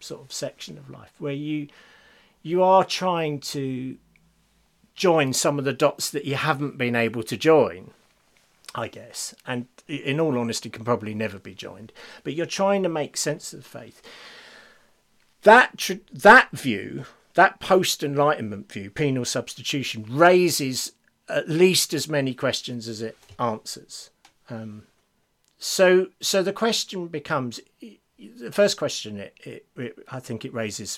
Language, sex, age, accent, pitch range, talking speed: English, male, 40-59, British, 130-175 Hz, 150 wpm